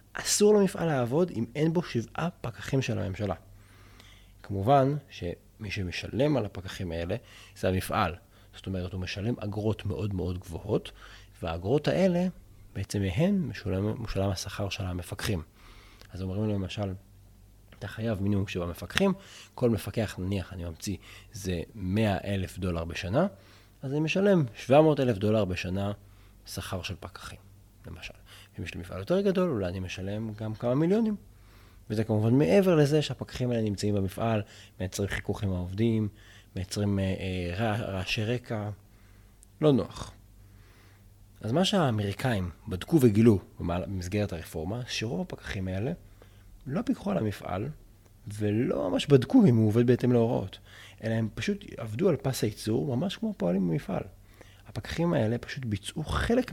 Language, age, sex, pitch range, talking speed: Hebrew, 30-49, male, 95-120 Hz, 140 wpm